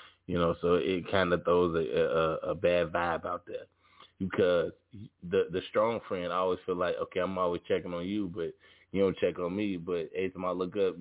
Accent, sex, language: American, male, English